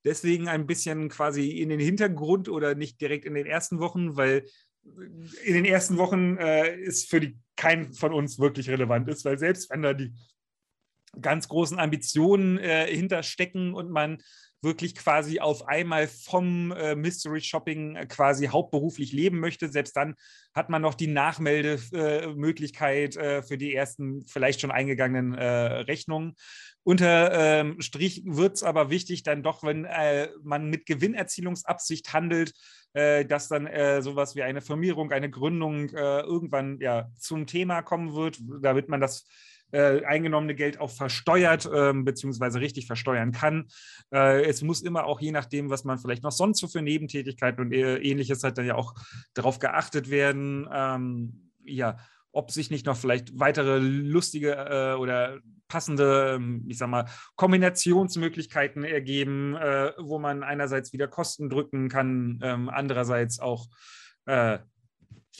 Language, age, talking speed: German, 30-49, 150 wpm